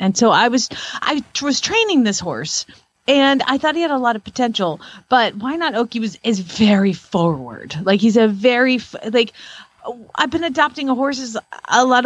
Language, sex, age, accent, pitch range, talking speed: English, female, 30-49, American, 195-260 Hz, 195 wpm